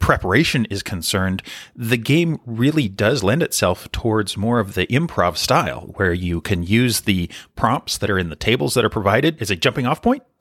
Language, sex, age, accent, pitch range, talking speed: English, male, 30-49, American, 105-145 Hz, 195 wpm